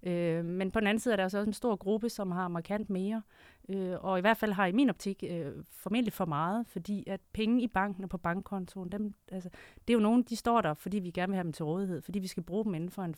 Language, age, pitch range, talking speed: Danish, 30-49, 160-195 Hz, 260 wpm